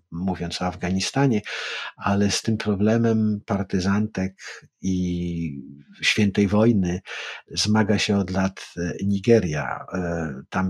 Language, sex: Polish, male